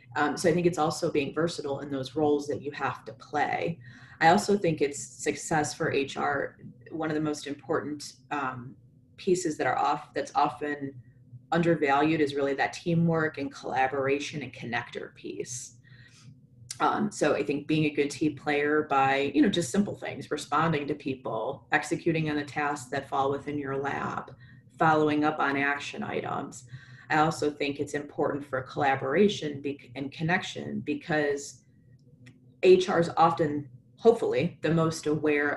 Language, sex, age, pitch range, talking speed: English, female, 30-49, 135-155 Hz, 160 wpm